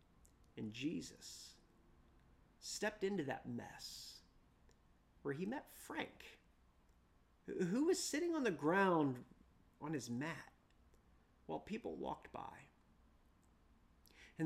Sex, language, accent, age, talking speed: male, English, American, 30-49, 100 wpm